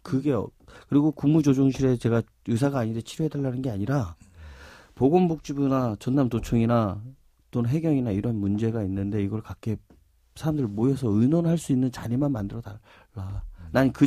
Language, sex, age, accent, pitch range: Korean, male, 40-59, native, 90-140 Hz